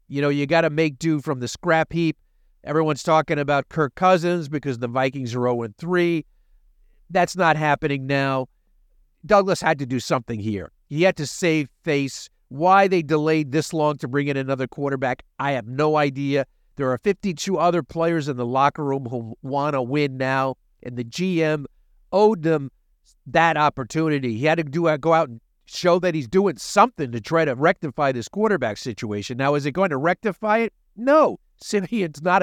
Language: English